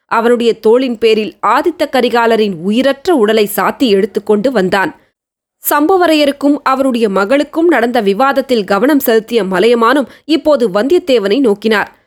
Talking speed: 105 wpm